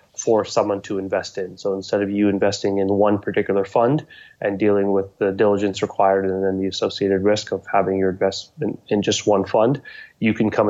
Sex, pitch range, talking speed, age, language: male, 100-115 Hz, 200 wpm, 20-39, English